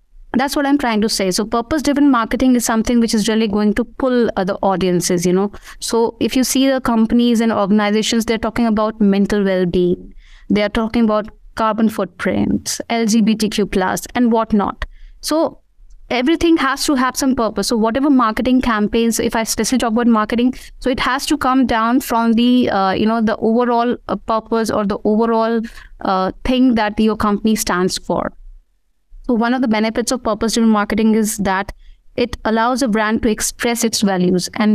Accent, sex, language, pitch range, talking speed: Indian, female, English, 210-240 Hz, 180 wpm